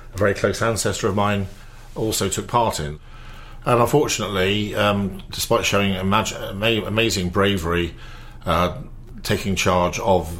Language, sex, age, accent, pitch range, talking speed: English, male, 50-69, British, 85-105 Hz, 115 wpm